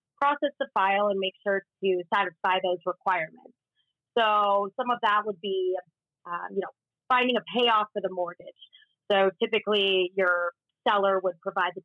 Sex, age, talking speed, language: female, 30-49, 160 wpm, English